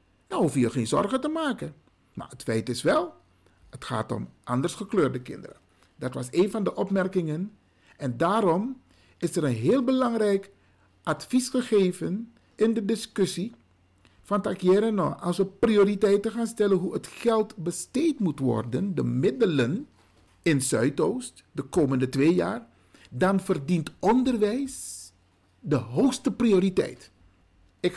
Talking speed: 140 wpm